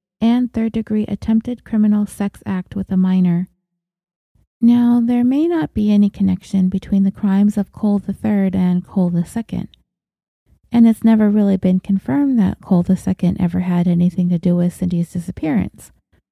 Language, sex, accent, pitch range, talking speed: English, female, American, 180-220 Hz, 170 wpm